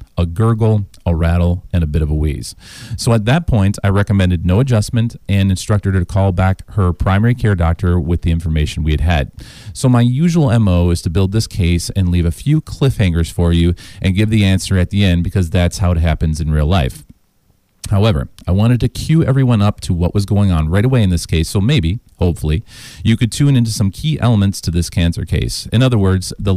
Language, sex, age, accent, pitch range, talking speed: English, male, 40-59, American, 85-110 Hz, 225 wpm